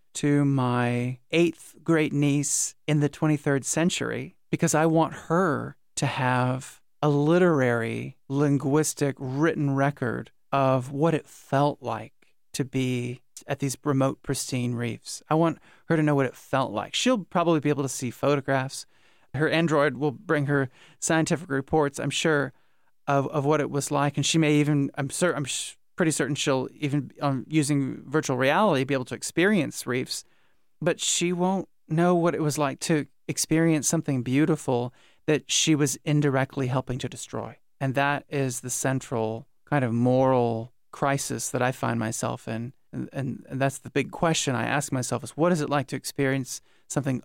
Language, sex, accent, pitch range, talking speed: English, male, American, 130-150 Hz, 175 wpm